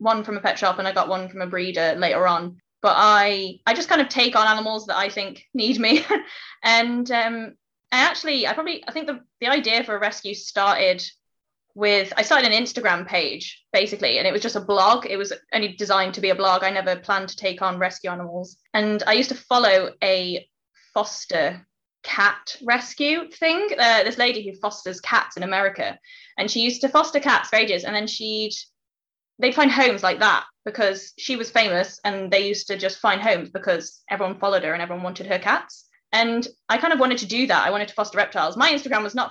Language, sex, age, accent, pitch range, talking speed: English, female, 10-29, British, 190-245 Hz, 220 wpm